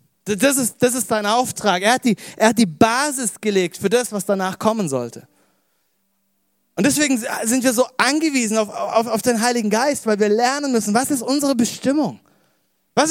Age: 30-49